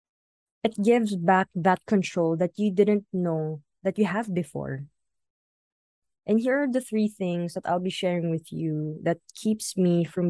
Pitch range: 165-205 Hz